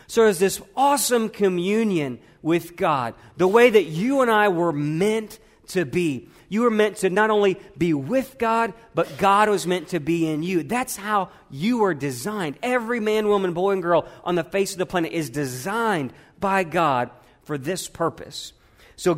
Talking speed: 185 wpm